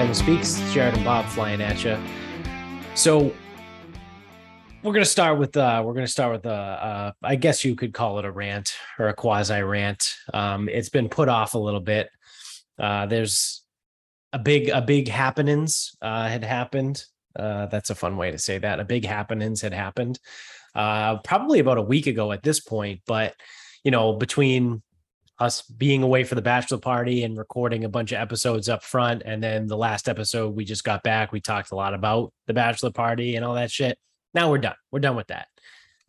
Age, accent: 20-39, American